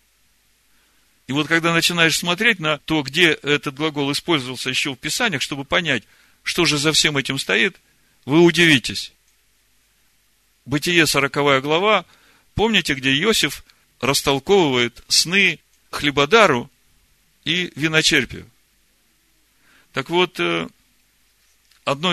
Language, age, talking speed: Russian, 50-69, 105 wpm